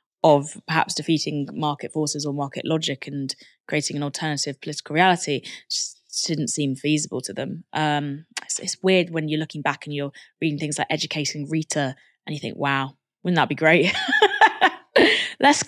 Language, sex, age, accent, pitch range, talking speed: English, female, 20-39, British, 150-205 Hz, 170 wpm